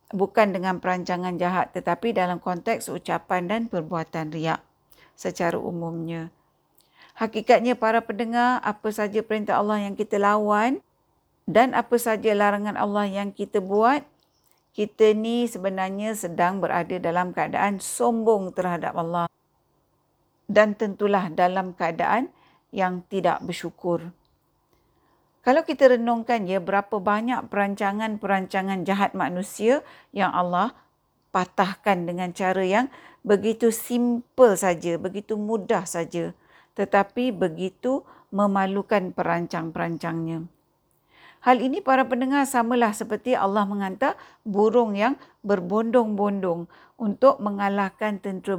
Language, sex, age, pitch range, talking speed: Malay, female, 50-69, 185-230 Hz, 105 wpm